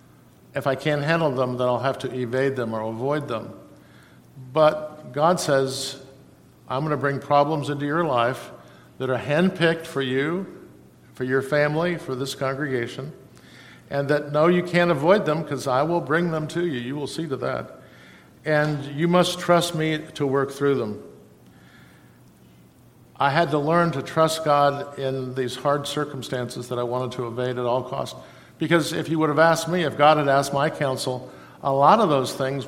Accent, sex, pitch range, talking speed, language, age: American, male, 130-155 Hz, 185 wpm, English, 50-69